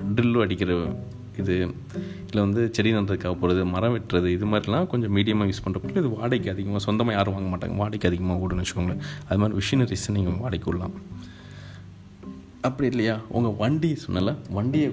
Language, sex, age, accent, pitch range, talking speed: Tamil, male, 30-49, native, 90-105 Hz, 155 wpm